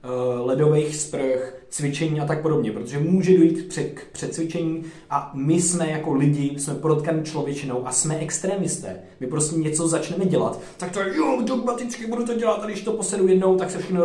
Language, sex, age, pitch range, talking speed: Czech, male, 20-39, 130-165 Hz, 180 wpm